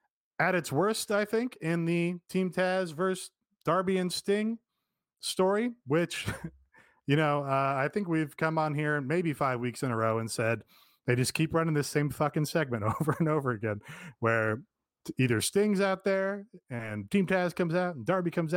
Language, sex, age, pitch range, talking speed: English, male, 30-49, 120-170 Hz, 185 wpm